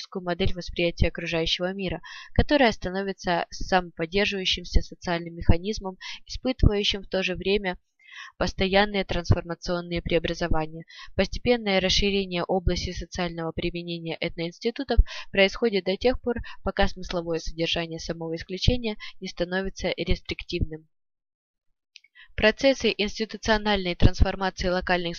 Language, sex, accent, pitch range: Russian, female, native, 175-210 Hz